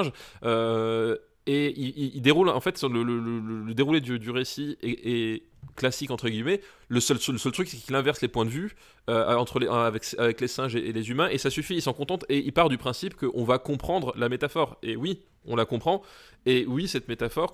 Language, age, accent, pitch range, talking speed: French, 20-39, French, 115-140 Hz, 240 wpm